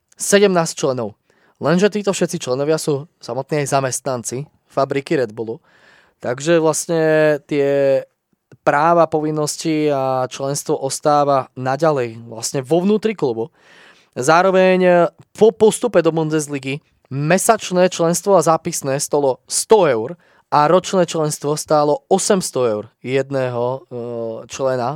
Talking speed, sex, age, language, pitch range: 110 wpm, male, 20-39, Slovak, 130-165 Hz